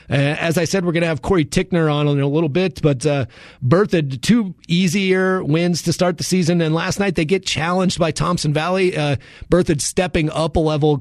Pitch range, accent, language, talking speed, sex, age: 150-180 Hz, American, English, 215 wpm, male, 30-49